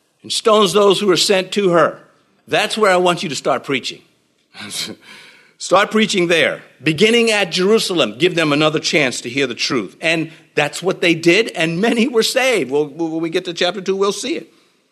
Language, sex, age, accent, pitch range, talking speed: English, male, 50-69, American, 135-190 Hz, 195 wpm